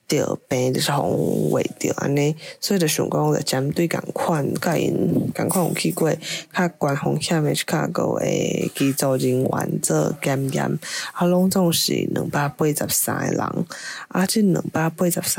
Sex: female